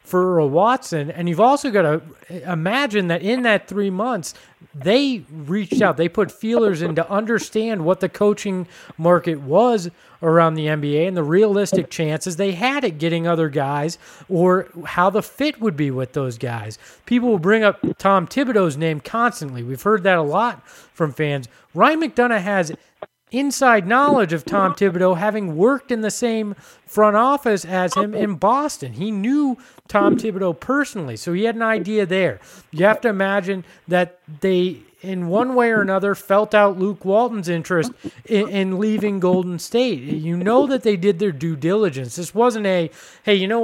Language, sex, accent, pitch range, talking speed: English, male, American, 165-215 Hz, 175 wpm